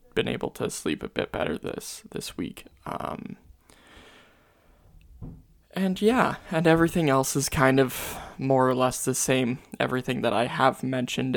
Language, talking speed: English, 155 wpm